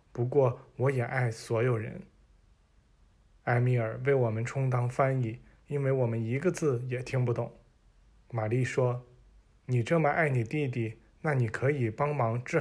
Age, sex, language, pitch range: 20-39, male, Chinese, 115-135 Hz